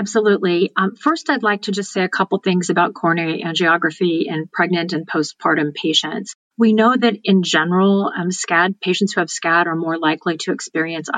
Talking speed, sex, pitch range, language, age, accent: 190 wpm, female, 165-195 Hz, English, 40-59, American